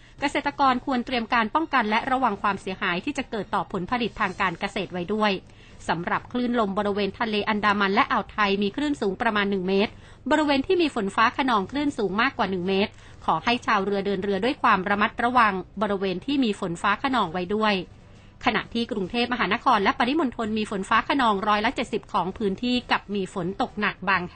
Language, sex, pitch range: Thai, female, 195-245 Hz